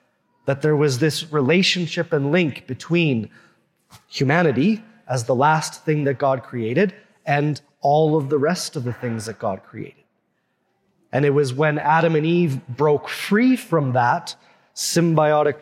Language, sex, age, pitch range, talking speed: English, male, 30-49, 130-170 Hz, 150 wpm